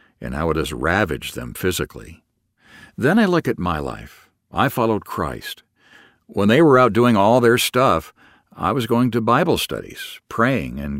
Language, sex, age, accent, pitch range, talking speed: English, male, 60-79, American, 80-125 Hz, 175 wpm